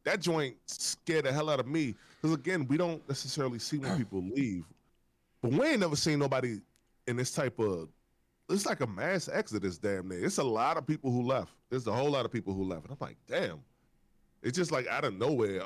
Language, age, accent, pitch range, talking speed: English, 20-39, American, 105-140 Hz, 225 wpm